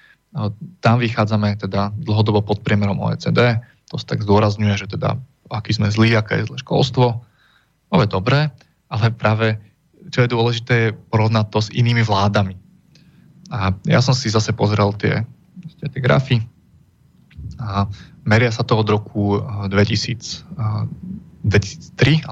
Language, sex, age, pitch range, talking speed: Slovak, male, 20-39, 105-130 Hz, 135 wpm